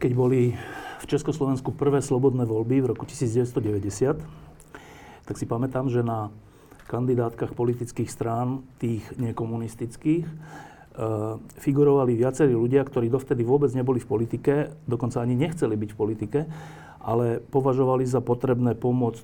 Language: Slovak